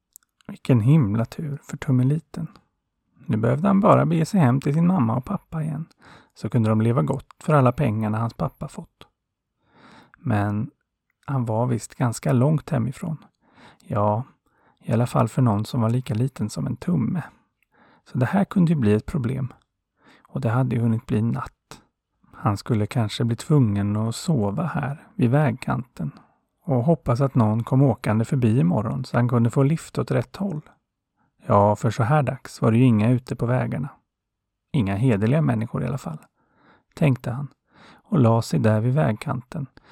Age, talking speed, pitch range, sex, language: 30-49, 175 wpm, 115-145 Hz, male, Swedish